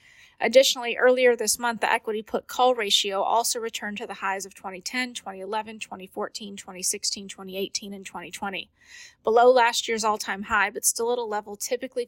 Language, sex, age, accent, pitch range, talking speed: English, female, 30-49, American, 200-235 Hz, 165 wpm